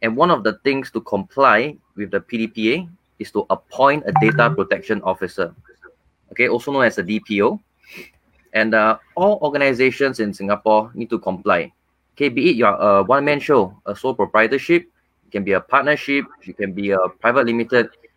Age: 20-39